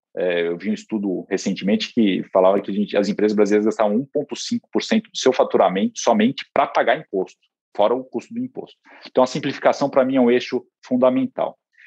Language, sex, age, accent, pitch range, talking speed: Portuguese, male, 40-59, Brazilian, 110-180 Hz, 185 wpm